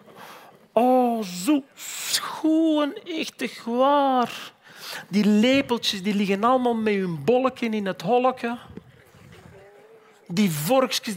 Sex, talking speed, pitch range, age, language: male, 95 wpm, 200-270 Hz, 40-59, Dutch